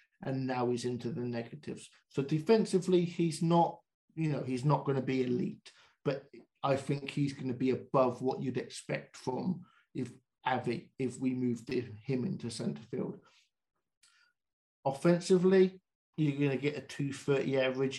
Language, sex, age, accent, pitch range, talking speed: English, male, 50-69, British, 125-150 Hz, 155 wpm